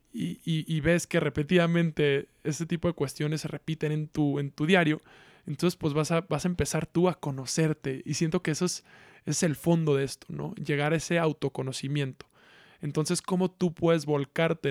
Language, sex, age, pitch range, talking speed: Spanish, male, 20-39, 145-165 Hz, 190 wpm